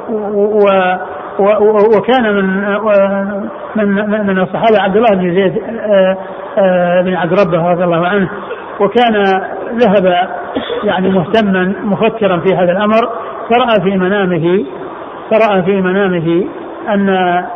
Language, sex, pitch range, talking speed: Arabic, male, 185-205 Hz, 105 wpm